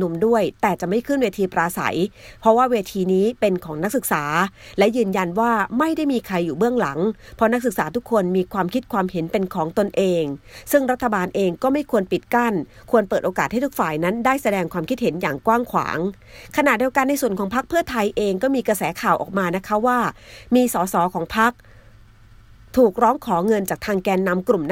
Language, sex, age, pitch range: Thai, female, 30-49, 180-240 Hz